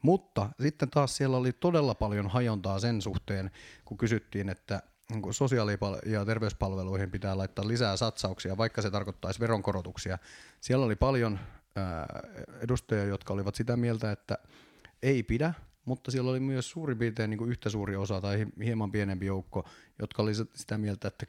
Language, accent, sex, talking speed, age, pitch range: Finnish, native, male, 150 wpm, 30-49, 105-125 Hz